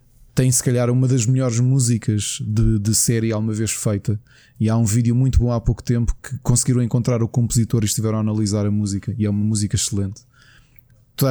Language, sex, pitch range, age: Portuguese, male, 115-140 Hz, 20-39